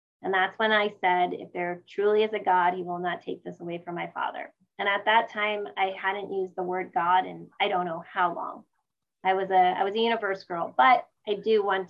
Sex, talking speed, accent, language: female, 240 wpm, American, English